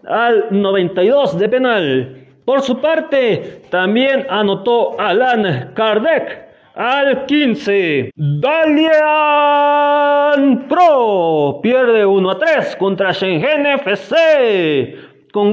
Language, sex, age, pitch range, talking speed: Spanish, male, 30-49, 185-290 Hz, 90 wpm